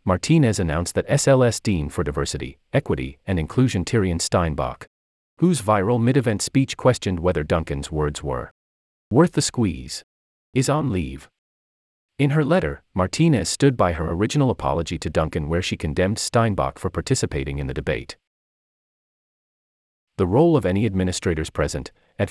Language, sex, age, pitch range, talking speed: English, male, 30-49, 75-125 Hz, 145 wpm